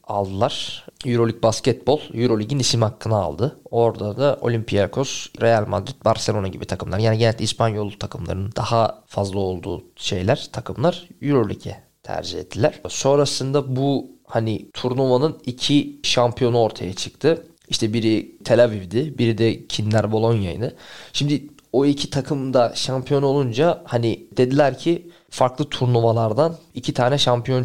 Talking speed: 125 wpm